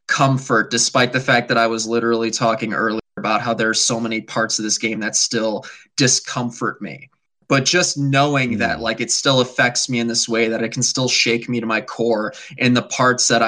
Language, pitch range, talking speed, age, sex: English, 115-130 Hz, 220 wpm, 20-39, male